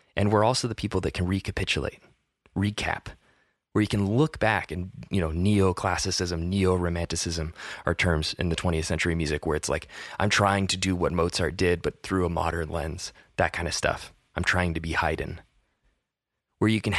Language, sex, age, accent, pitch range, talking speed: English, male, 20-39, American, 90-110 Hz, 190 wpm